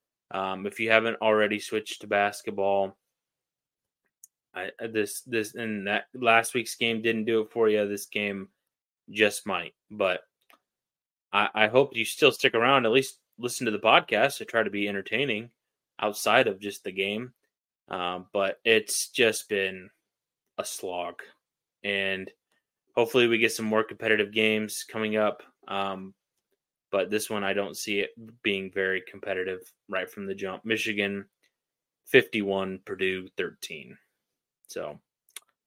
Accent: American